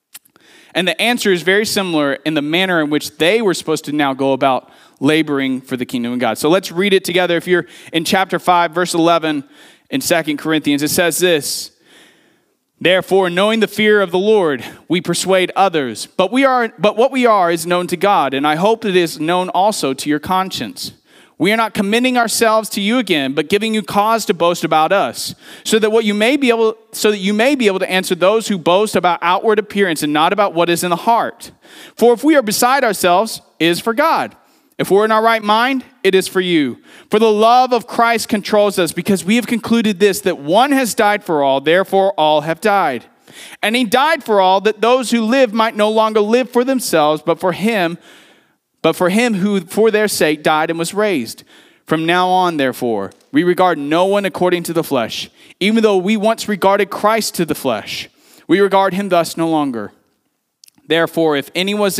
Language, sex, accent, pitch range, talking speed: English, male, American, 170-220 Hz, 210 wpm